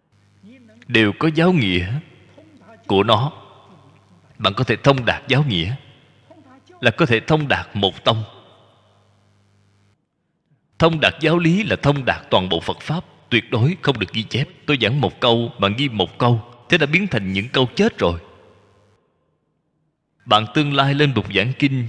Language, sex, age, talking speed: Vietnamese, male, 20-39, 165 wpm